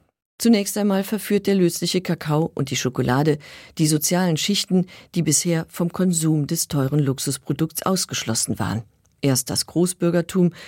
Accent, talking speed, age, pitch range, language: German, 135 wpm, 50-69, 130-180 Hz, German